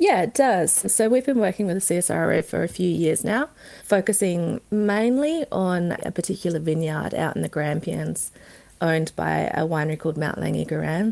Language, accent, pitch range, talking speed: English, Australian, 160-200 Hz, 175 wpm